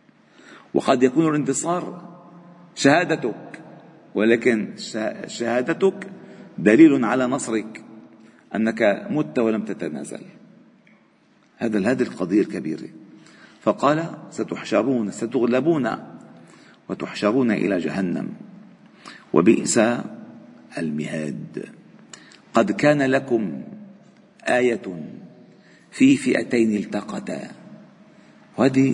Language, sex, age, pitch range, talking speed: Arabic, male, 50-69, 105-170 Hz, 70 wpm